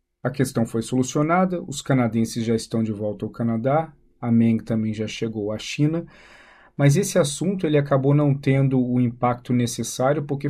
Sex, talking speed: male, 170 wpm